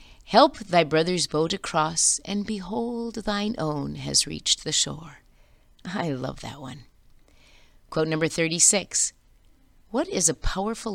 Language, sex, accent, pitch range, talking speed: English, female, American, 135-195 Hz, 130 wpm